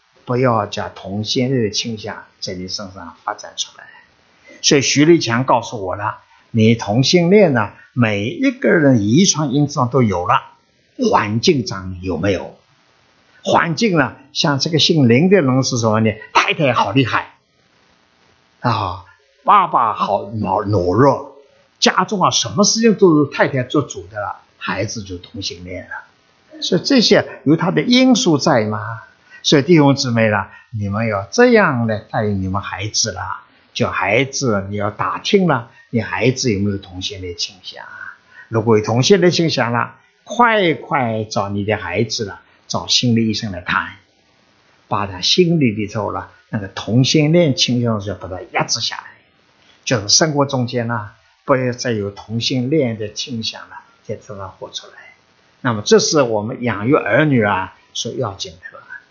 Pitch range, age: 105-150 Hz, 60-79